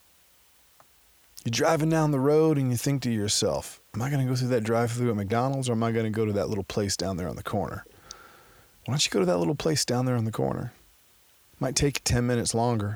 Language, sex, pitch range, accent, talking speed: English, male, 100-120 Hz, American, 250 wpm